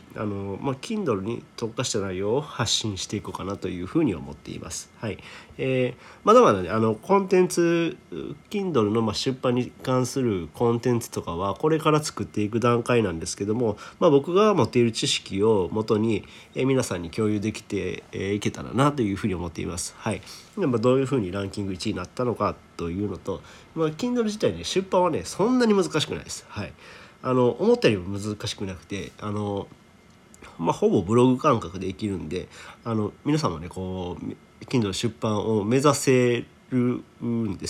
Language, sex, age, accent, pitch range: Japanese, male, 40-59, native, 100-130 Hz